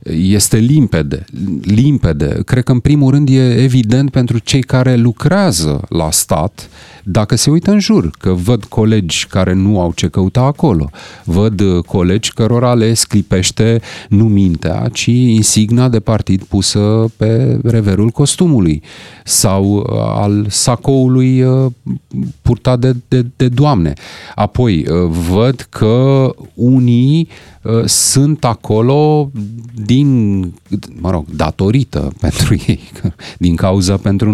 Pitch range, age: 95-130 Hz, 40-59